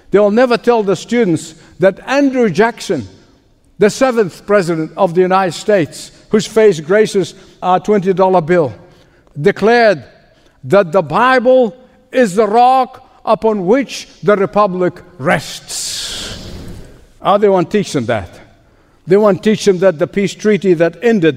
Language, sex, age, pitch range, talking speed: English, male, 60-79, 155-230 Hz, 145 wpm